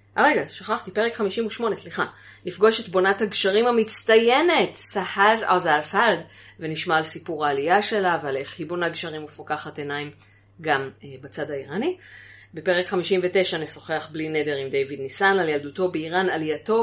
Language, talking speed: Hebrew, 150 wpm